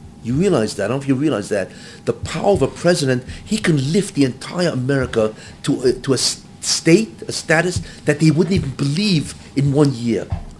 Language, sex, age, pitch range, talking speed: English, male, 50-69, 130-190 Hz, 200 wpm